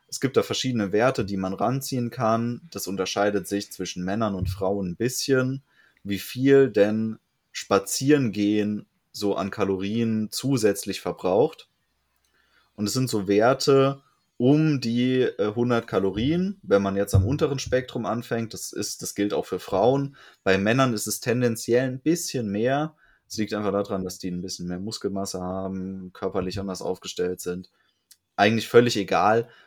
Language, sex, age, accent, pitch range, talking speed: German, male, 20-39, German, 95-120 Hz, 155 wpm